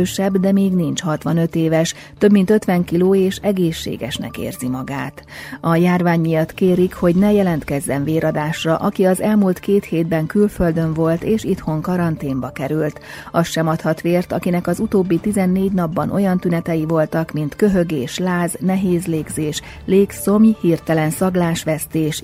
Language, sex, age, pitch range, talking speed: Hungarian, female, 30-49, 150-185 Hz, 140 wpm